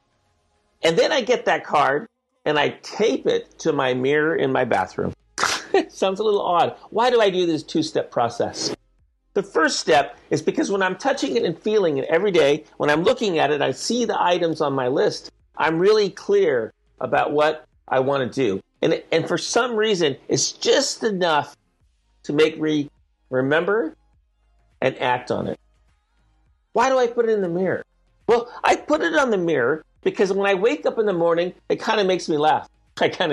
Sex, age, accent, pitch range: male, 50-69, American, 155-255 Hz